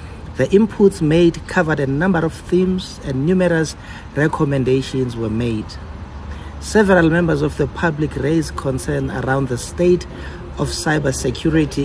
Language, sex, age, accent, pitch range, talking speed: English, male, 60-79, South African, 125-170 Hz, 125 wpm